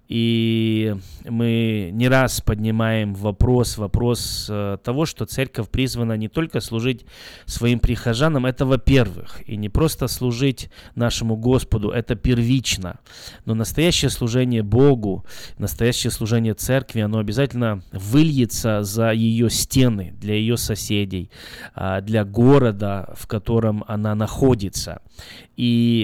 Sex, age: male, 20-39